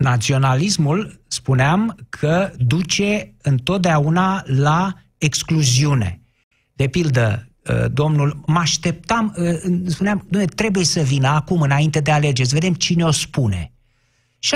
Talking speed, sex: 110 wpm, male